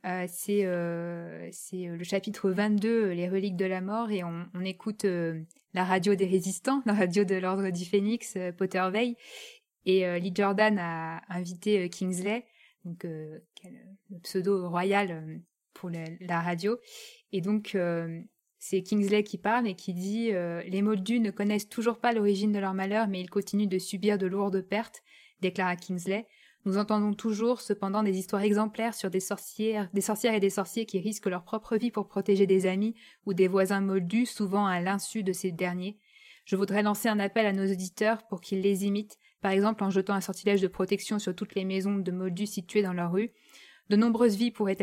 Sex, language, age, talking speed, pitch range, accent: female, French, 20-39, 200 wpm, 185-215 Hz, French